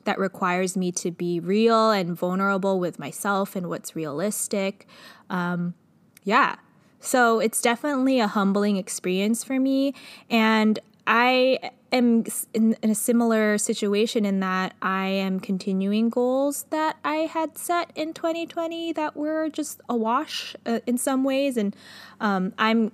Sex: female